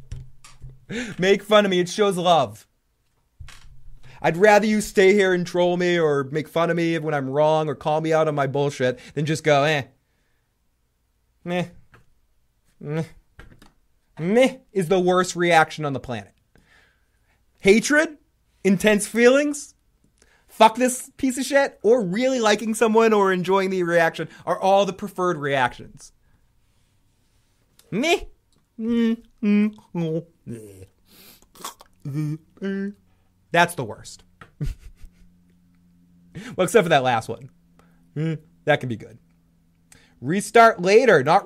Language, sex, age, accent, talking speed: English, male, 20-39, American, 120 wpm